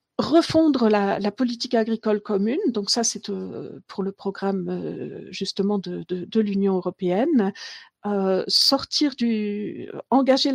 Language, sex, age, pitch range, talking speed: French, female, 50-69, 200-240 Hz, 135 wpm